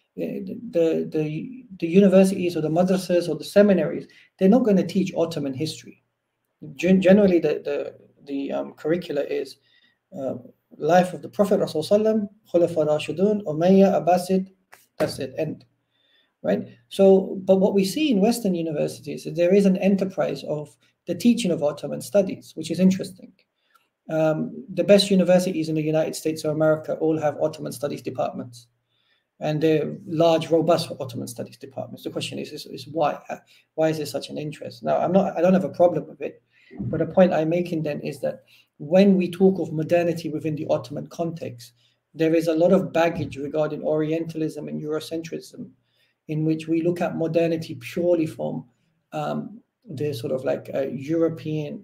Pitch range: 155-190 Hz